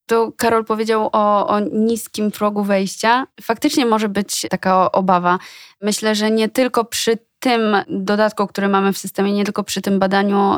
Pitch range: 195-215 Hz